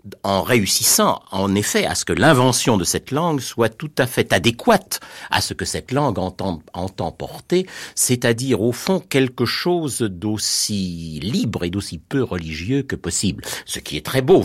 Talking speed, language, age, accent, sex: 175 wpm, French, 60-79, French, male